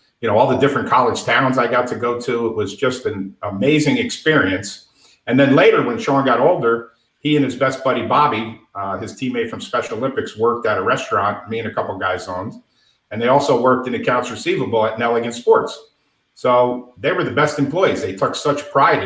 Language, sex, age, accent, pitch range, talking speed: English, male, 50-69, American, 115-140 Hz, 210 wpm